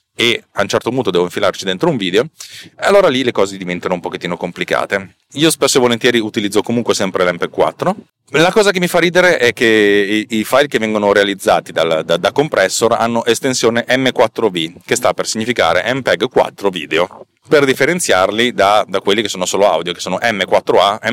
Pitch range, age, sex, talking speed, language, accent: 100-130 Hz, 30-49, male, 190 wpm, Italian, native